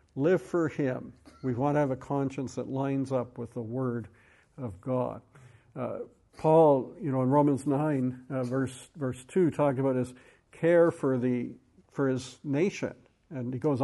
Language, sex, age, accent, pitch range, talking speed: English, male, 60-79, American, 125-150 Hz, 175 wpm